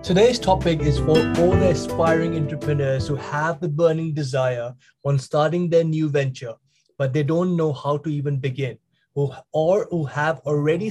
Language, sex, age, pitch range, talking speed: English, male, 20-39, 135-170 Hz, 165 wpm